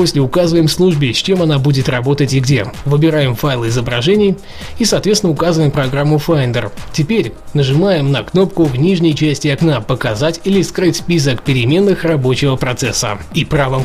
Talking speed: 150 wpm